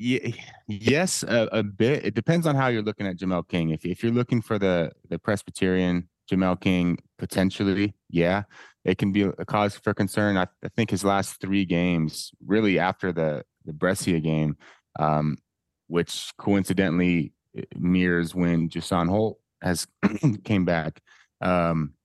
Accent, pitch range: American, 90-105 Hz